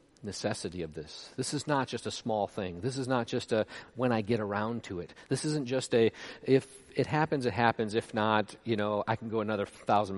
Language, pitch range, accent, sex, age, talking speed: English, 100-135 Hz, American, male, 40-59, 230 wpm